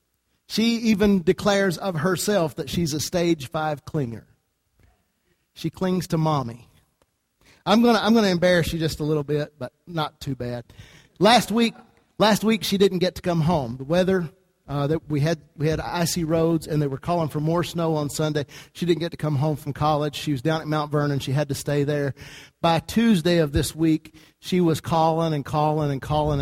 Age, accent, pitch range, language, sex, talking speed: 50-69, American, 150-190 Hz, English, male, 205 wpm